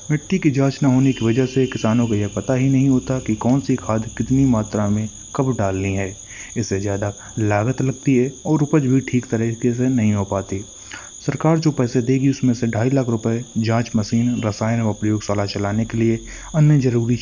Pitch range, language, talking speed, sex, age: 110-135 Hz, Hindi, 200 wpm, male, 30-49